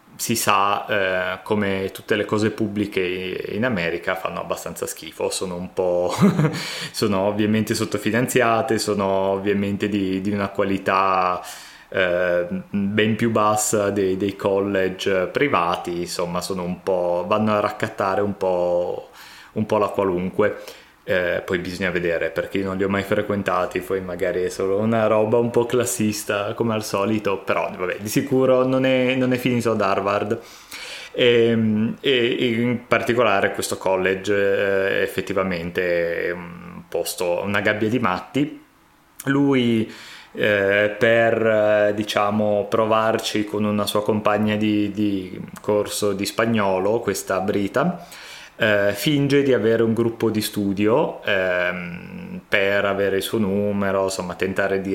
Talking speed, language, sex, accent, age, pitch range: 135 wpm, Italian, male, native, 20-39, 95-110 Hz